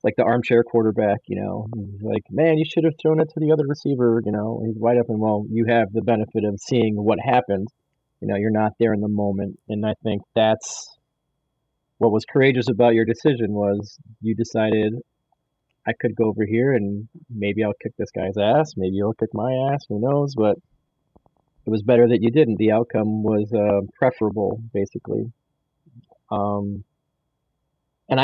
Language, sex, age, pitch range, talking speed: English, male, 30-49, 110-135 Hz, 185 wpm